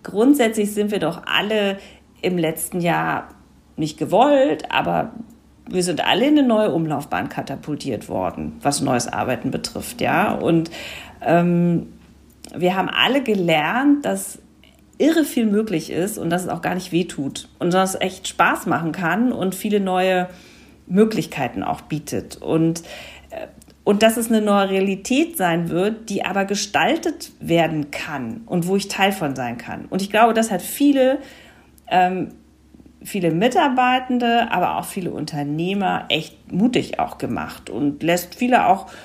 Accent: German